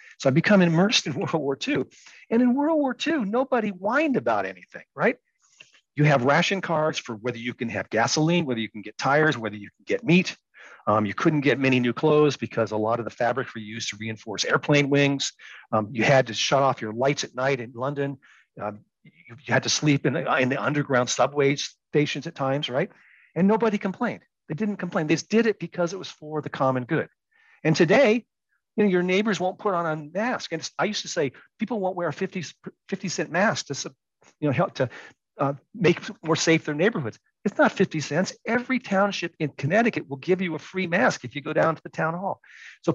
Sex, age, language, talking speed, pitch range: male, 50-69, English, 220 wpm, 140-205 Hz